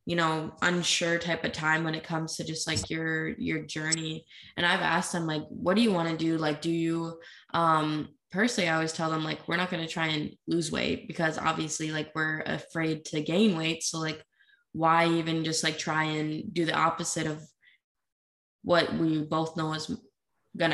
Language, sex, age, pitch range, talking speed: English, female, 20-39, 155-175 Hz, 205 wpm